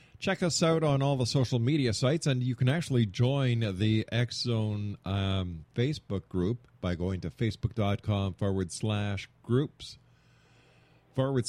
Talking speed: 135 wpm